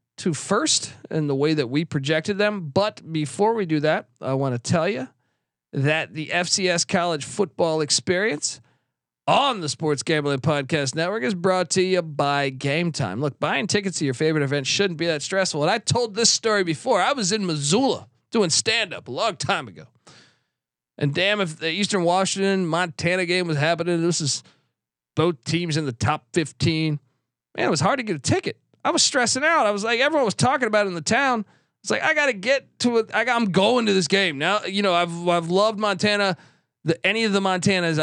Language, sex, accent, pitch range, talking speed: English, male, American, 145-185 Hz, 210 wpm